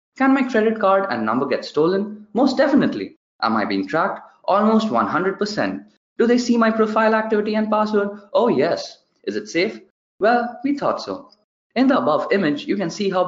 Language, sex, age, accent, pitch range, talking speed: English, male, 20-39, Indian, 170-230 Hz, 185 wpm